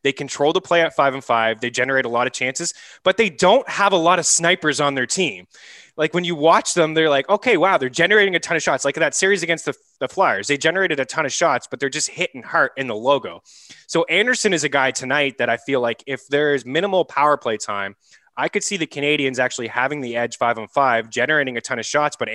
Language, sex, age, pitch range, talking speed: English, male, 20-39, 120-160 Hz, 255 wpm